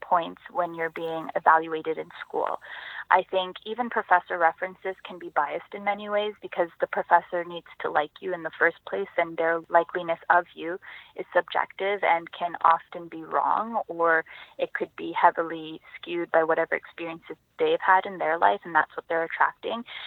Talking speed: 180 wpm